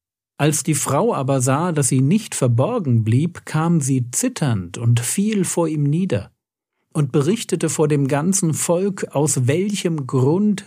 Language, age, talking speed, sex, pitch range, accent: German, 50-69, 150 wpm, male, 125-170 Hz, German